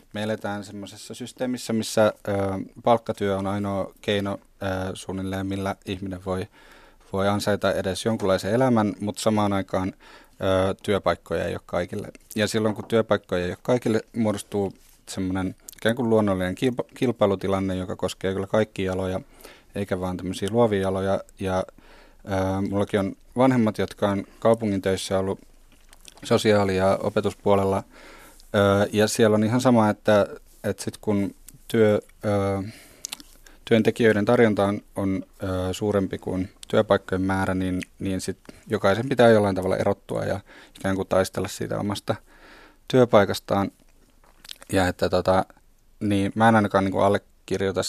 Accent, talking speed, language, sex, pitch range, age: native, 135 wpm, Finnish, male, 95-110 Hz, 30-49